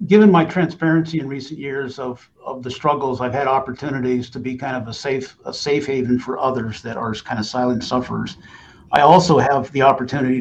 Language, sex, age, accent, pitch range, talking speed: English, male, 50-69, American, 130-160 Hz, 200 wpm